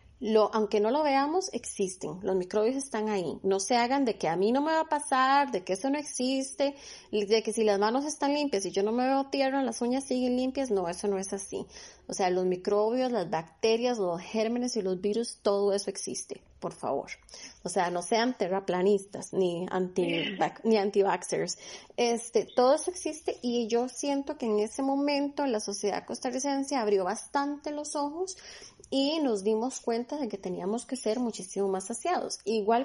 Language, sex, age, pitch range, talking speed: Spanish, female, 30-49, 200-275 Hz, 185 wpm